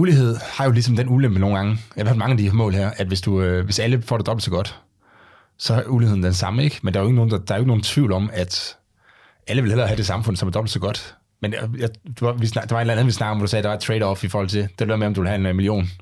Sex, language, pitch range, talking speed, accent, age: male, Danish, 100-120 Hz, 340 wpm, native, 30-49